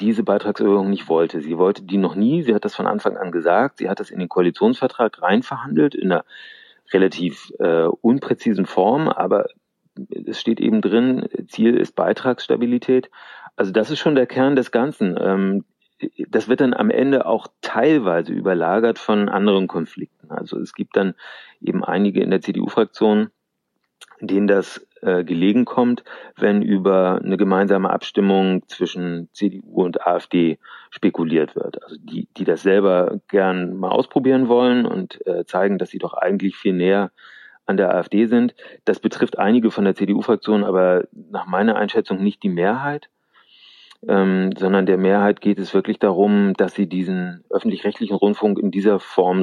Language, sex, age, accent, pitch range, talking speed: German, male, 40-59, German, 95-115 Hz, 160 wpm